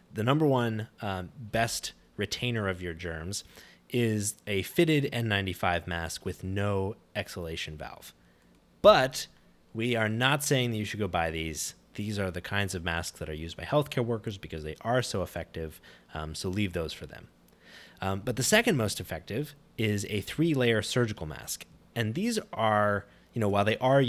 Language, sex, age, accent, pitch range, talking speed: English, male, 20-39, American, 90-125 Hz, 180 wpm